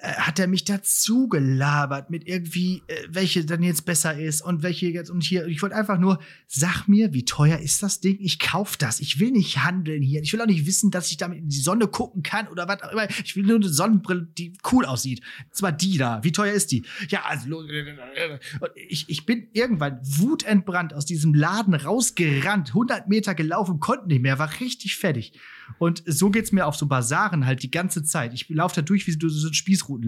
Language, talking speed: German, 220 wpm